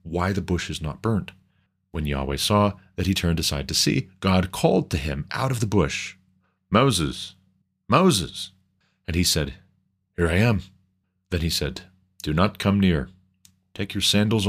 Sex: male